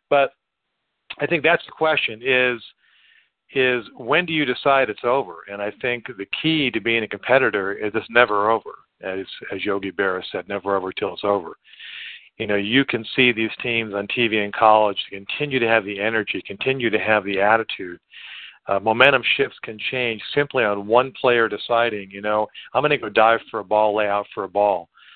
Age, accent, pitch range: 50-69, American, 100-125 Hz